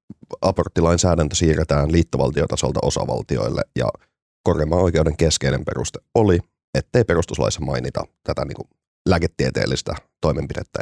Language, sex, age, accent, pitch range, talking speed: Finnish, male, 30-49, native, 70-85 Hz, 95 wpm